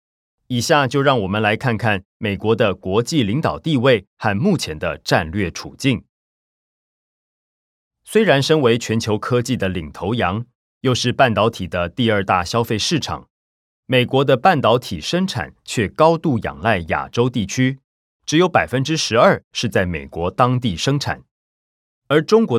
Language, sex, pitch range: Chinese, male, 95-135 Hz